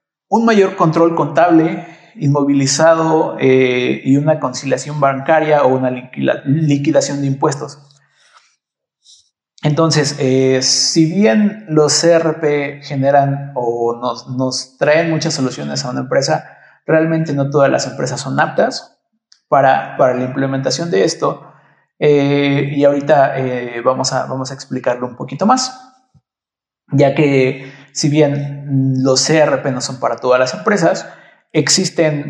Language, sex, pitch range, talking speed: Spanish, male, 130-160 Hz, 130 wpm